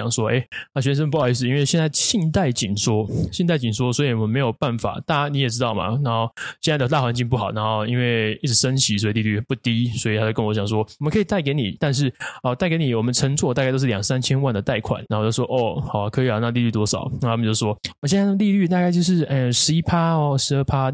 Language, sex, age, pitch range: Chinese, male, 20-39, 115-155 Hz